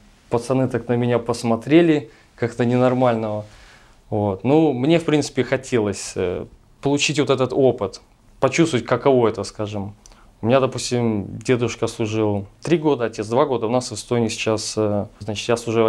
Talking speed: 145 wpm